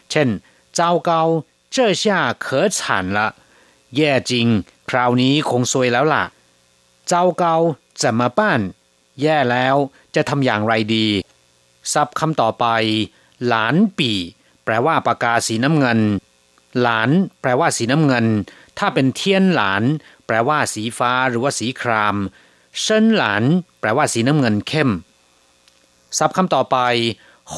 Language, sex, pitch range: Thai, male, 110-150 Hz